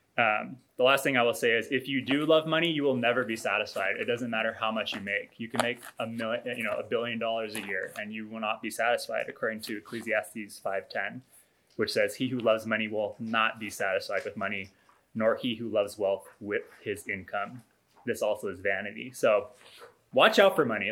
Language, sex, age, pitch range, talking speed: English, male, 20-39, 110-170 Hz, 220 wpm